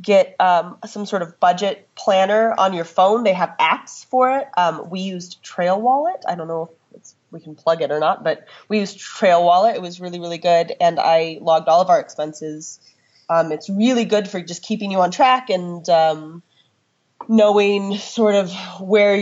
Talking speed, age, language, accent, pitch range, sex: 195 wpm, 30-49, English, American, 165-200 Hz, female